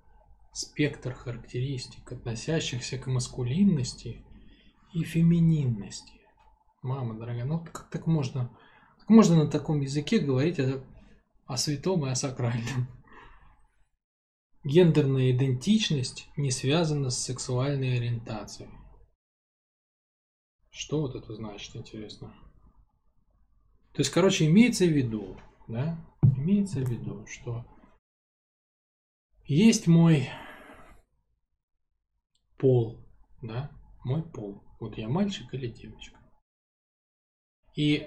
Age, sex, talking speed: 20-39, male, 95 wpm